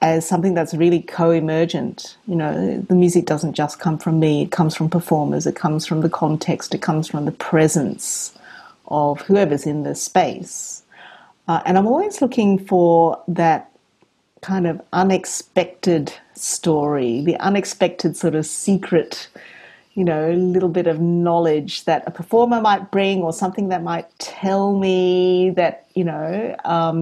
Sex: female